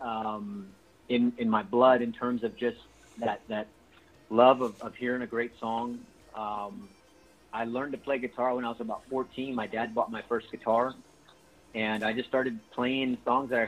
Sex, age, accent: male, 40-59, American